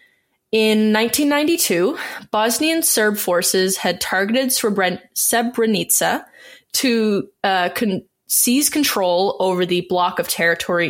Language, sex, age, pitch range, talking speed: English, female, 20-39, 185-245 Hz, 95 wpm